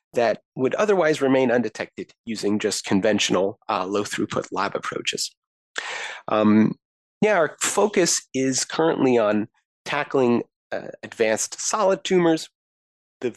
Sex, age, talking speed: male, 30-49, 110 wpm